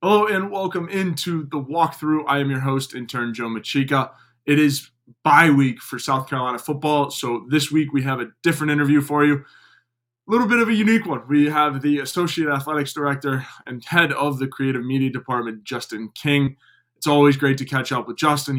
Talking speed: 195 wpm